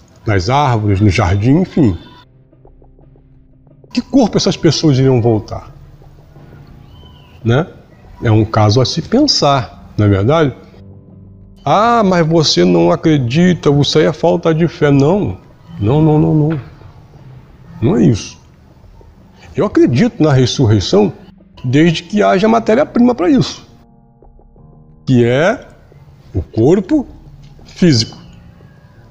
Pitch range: 125-165 Hz